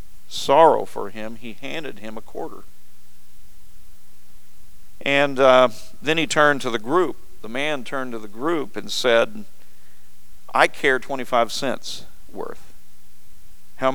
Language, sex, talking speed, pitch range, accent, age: English, male, 130 wpm, 105-145 Hz, American, 50-69